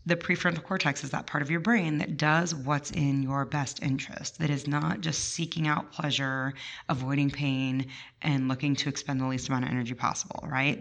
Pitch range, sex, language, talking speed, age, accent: 140-175 Hz, female, English, 200 wpm, 30-49, American